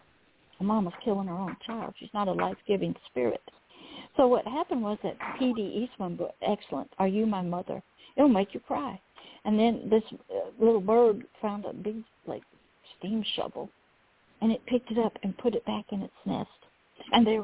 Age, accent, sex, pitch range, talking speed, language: 60-79, American, female, 210-255 Hz, 180 wpm, English